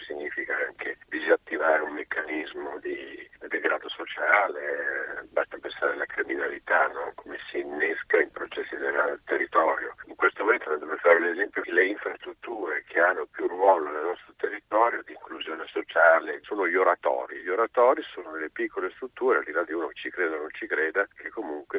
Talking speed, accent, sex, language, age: 170 wpm, native, male, Italian, 50-69